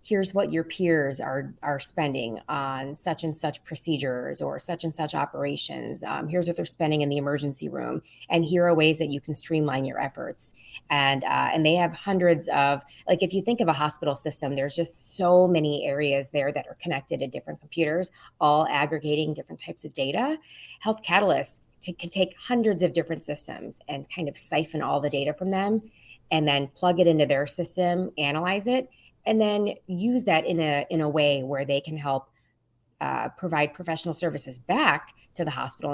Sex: female